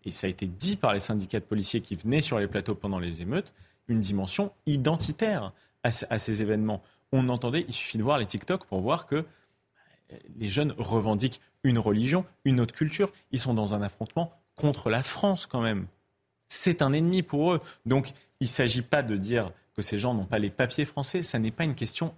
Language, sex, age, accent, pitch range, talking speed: French, male, 30-49, French, 110-150 Hz, 210 wpm